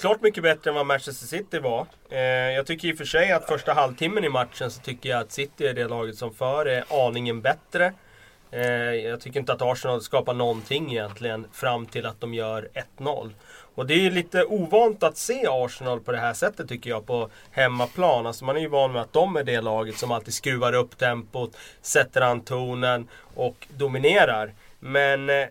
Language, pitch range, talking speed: Swedish, 120-150 Hz, 200 wpm